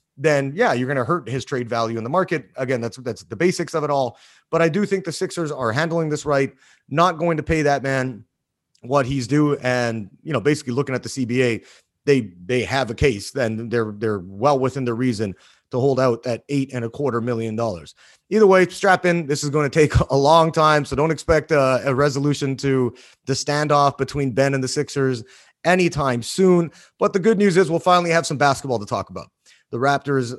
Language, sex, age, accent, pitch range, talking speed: English, male, 30-49, American, 125-155 Hz, 220 wpm